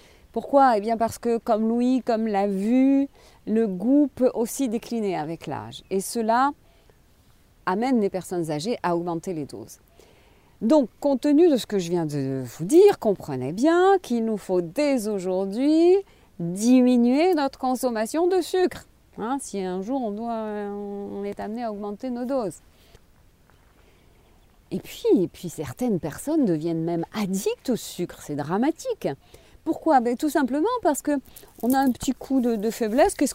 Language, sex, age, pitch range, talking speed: French, female, 40-59, 185-270 Hz, 160 wpm